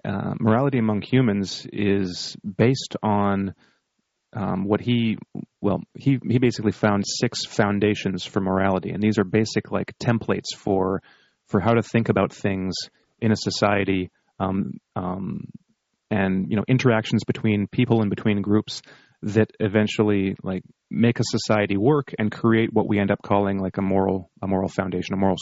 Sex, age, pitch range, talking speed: male, 30-49, 95-115 Hz, 160 wpm